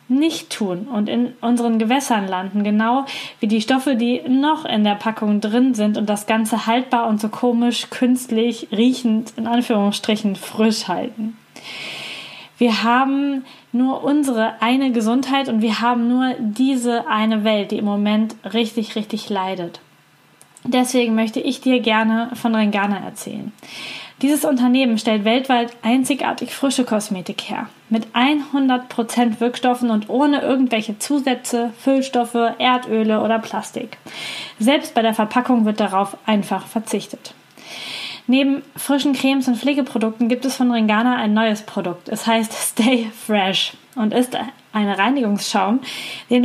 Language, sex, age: German, female, 10-29